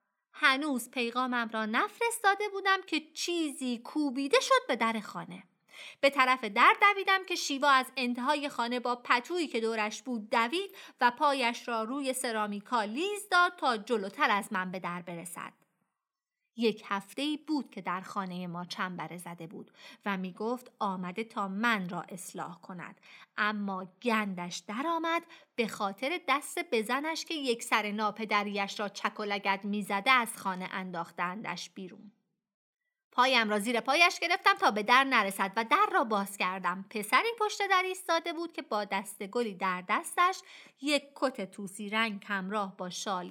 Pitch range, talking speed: 205-285 Hz, 155 wpm